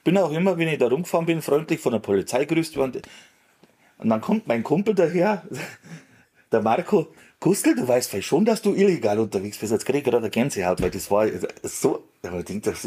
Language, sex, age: German, male, 30-49